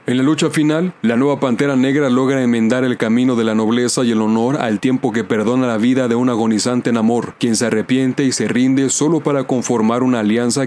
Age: 30-49